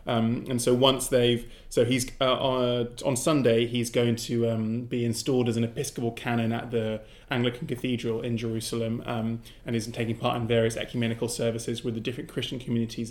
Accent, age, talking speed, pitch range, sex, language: British, 20-39, 190 wpm, 115-125 Hz, male, English